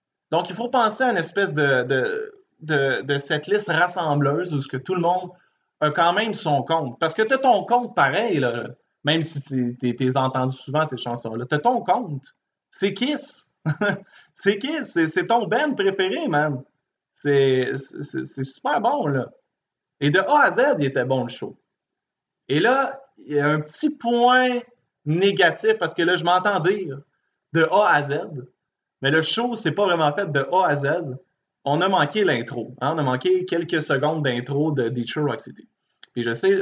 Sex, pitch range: male, 135-185 Hz